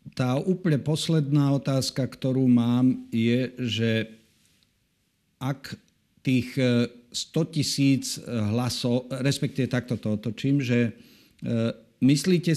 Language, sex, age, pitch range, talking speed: Slovak, male, 50-69, 115-135 Hz, 90 wpm